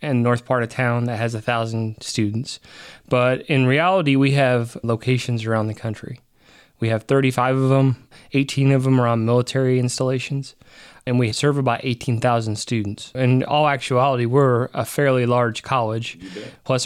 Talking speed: 165 wpm